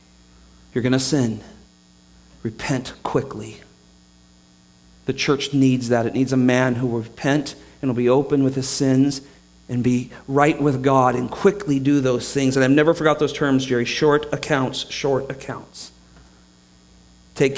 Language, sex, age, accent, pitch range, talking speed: English, male, 40-59, American, 115-150 Hz, 155 wpm